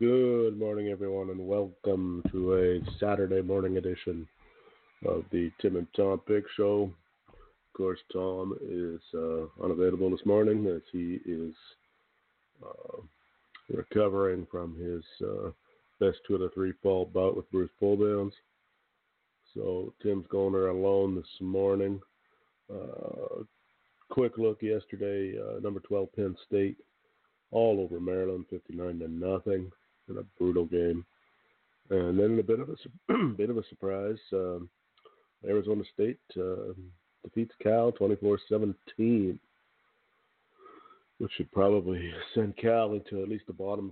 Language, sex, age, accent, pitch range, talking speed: English, male, 50-69, American, 95-110 Hz, 135 wpm